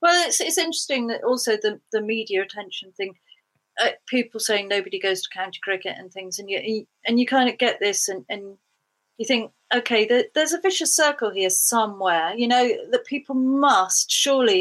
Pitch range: 210-295 Hz